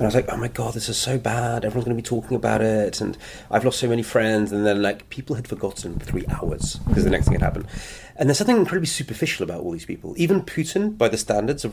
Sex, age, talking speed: male, 30-49, 265 wpm